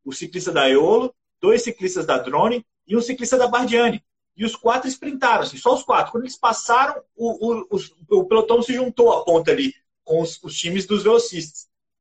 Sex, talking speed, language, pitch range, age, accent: male, 190 wpm, Portuguese, 165-240 Hz, 30-49, Brazilian